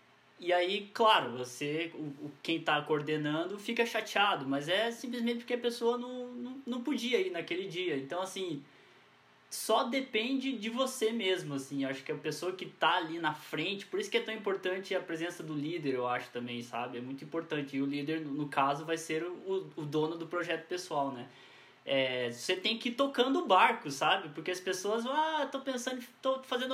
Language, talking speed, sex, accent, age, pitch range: Portuguese, 195 wpm, male, Brazilian, 10-29, 145-230 Hz